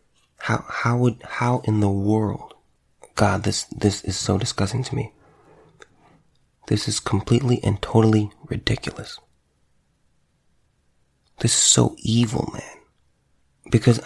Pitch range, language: 95-115 Hz, English